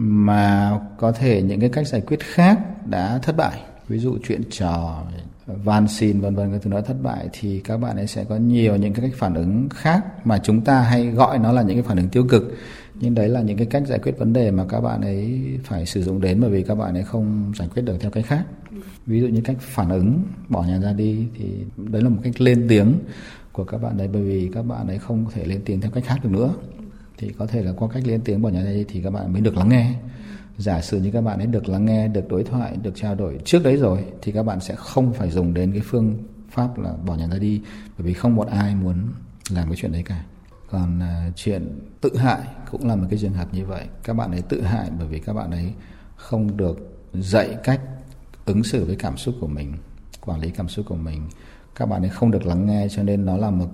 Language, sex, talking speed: Vietnamese, male, 260 wpm